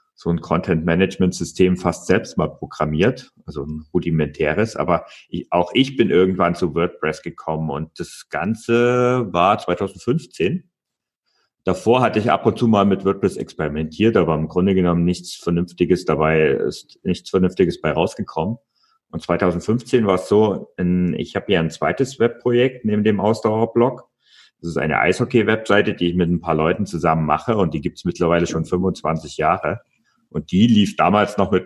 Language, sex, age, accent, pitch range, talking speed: German, male, 40-59, German, 85-110 Hz, 160 wpm